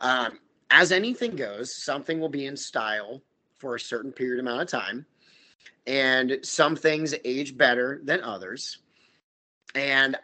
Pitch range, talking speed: 125-160 Hz, 140 wpm